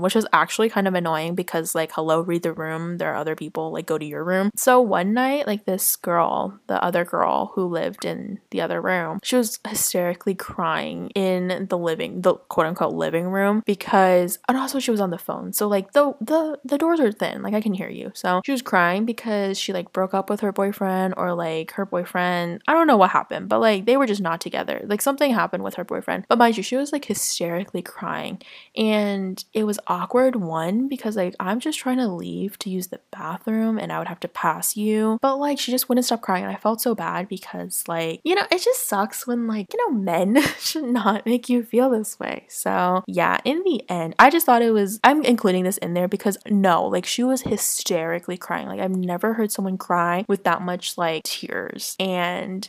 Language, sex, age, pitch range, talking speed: English, female, 20-39, 180-240 Hz, 225 wpm